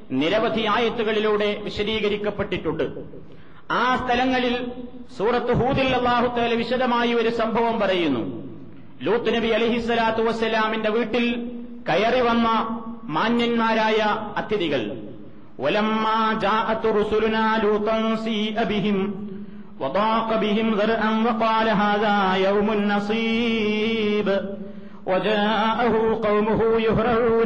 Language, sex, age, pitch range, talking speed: Malayalam, male, 40-59, 195-225 Hz, 45 wpm